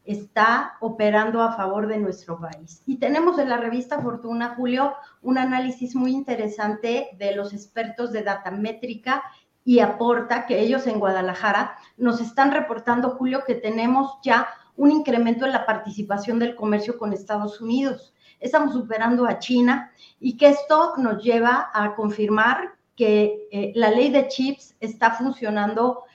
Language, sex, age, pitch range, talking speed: Spanish, female, 40-59, 210-255 Hz, 150 wpm